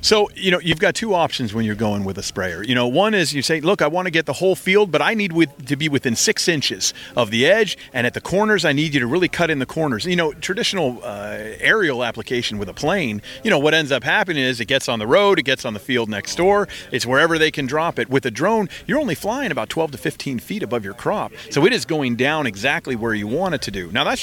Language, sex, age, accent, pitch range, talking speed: English, male, 40-59, American, 125-185 Hz, 280 wpm